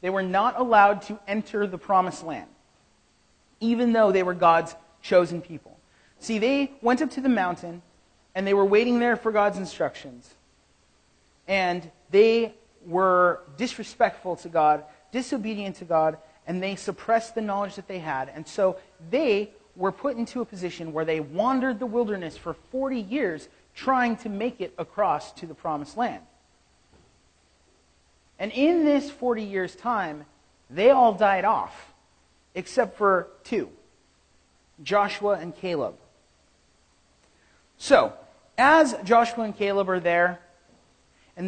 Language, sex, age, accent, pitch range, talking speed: English, male, 30-49, American, 165-215 Hz, 140 wpm